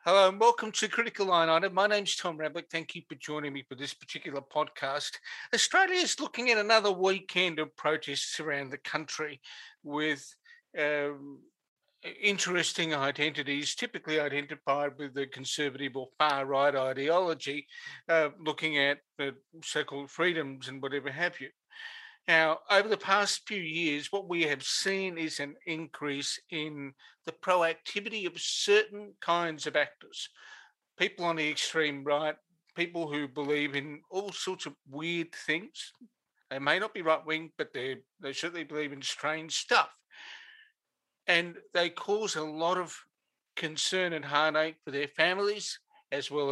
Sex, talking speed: male, 150 wpm